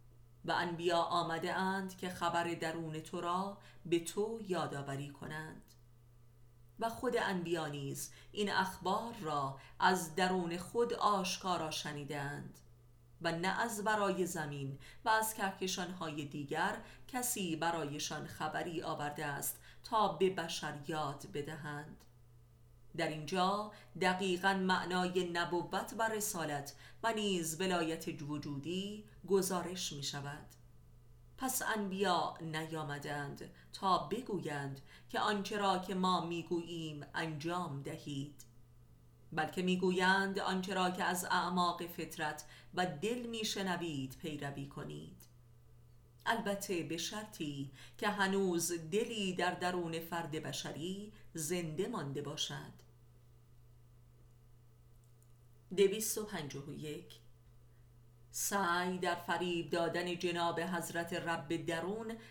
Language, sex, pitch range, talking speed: Persian, female, 140-185 Hz, 100 wpm